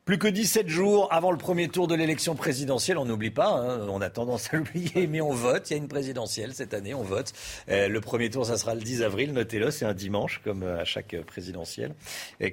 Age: 50-69